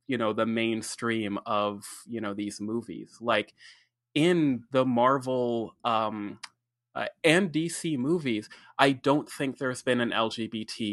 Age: 20-39